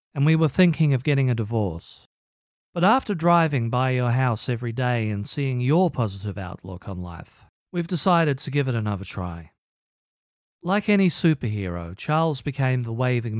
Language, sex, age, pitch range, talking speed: English, male, 40-59, 105-155 Hz, 165 wpm